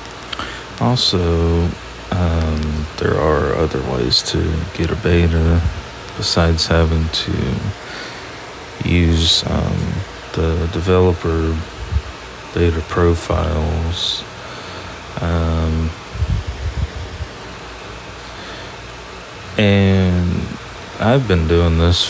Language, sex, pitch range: English, male, 80-95 Hz